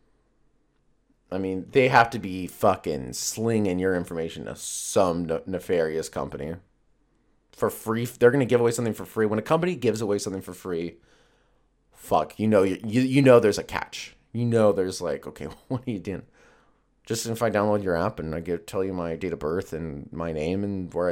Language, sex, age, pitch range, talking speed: English, male, 30-49, 90-115 Hz, 200 wpm